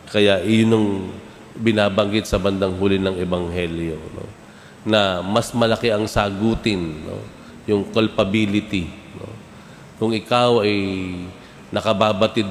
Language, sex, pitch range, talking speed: Filipino, male, 90-110 Hz, 105 wpm